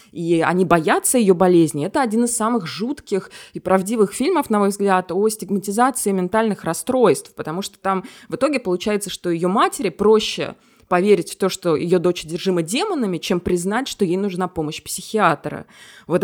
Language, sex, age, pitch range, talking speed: Russian, female, 20-39, 175-220 Hz, 170 wpm